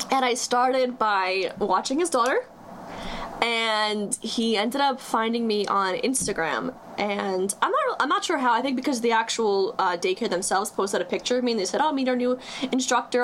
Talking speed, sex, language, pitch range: 200 wpm, female, English, 200-250 Hz